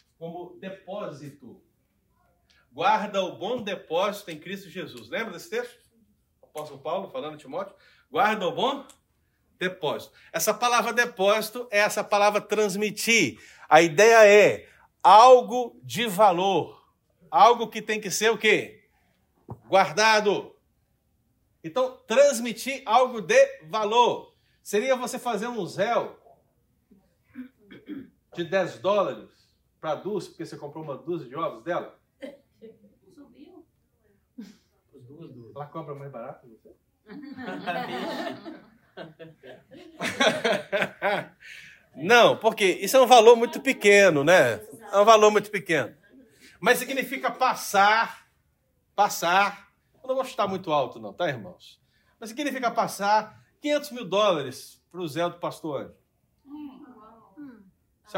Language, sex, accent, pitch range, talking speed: Portuguese, male, Brazilian, 180-245 Hz, 110 wpm